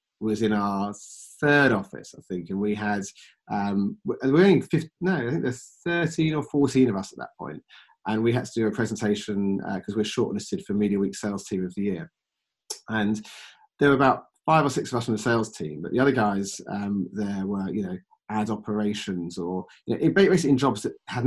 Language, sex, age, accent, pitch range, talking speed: English, male, 30-49, British, 100-125 Hz, 215 wpm